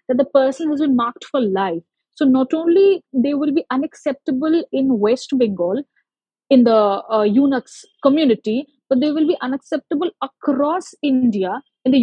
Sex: female